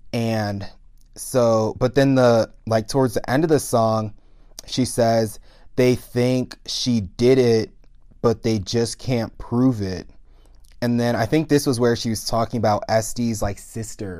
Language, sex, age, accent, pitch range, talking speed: English, male, 20-39, American, 105-125 Hz, 165 wpm